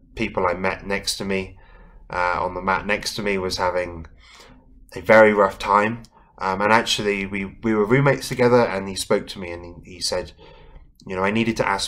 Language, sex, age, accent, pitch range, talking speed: English, male, 20-39, British, 85-105 Hz, 210 wpm